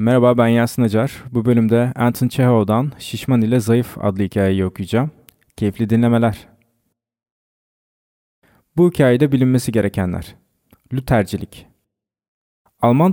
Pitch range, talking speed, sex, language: 100-135 Hz, 100 wpm, male, Turkish